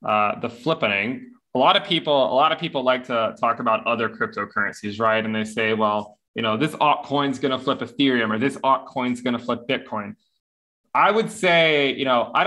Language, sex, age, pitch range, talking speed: English, male, 20-39, 110-140 Hz, 205 wpm